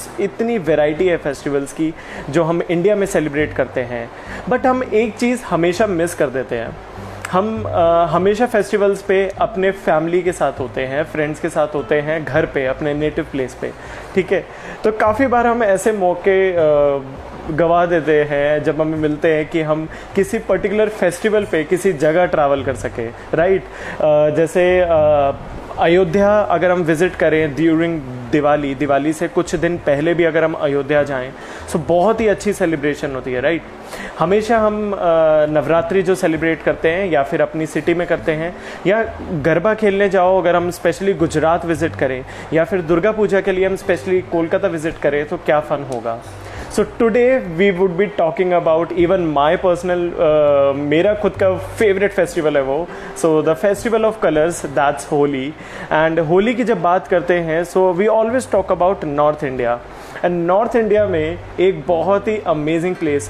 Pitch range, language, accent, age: 150-190 Hz, Hindi, native, 30-49